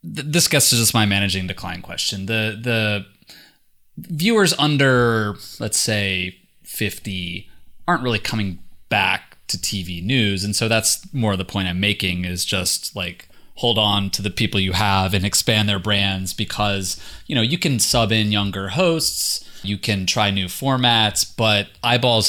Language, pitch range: English, 95-115 Hz